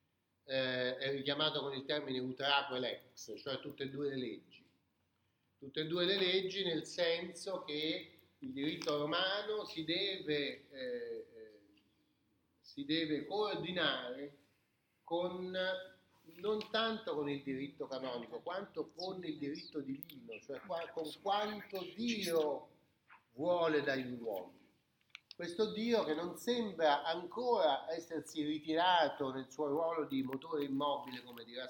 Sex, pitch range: male, 140-190 Hz